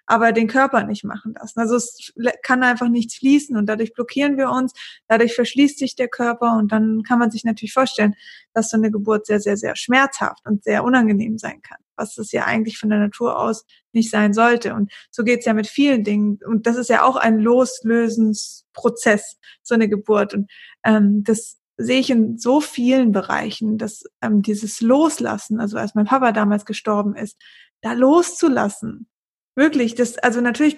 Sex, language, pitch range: female, German, 220-245 Hz